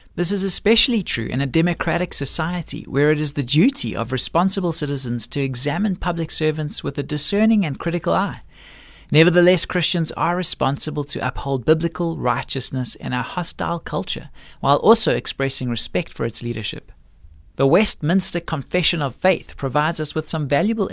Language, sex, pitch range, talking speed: English, male, 135-175 Hz, 160 wpm